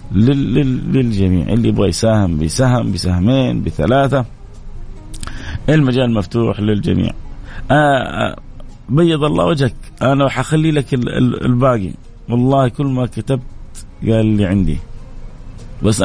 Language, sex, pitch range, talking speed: Arabic, male, 110-140 Hz, 100 wpm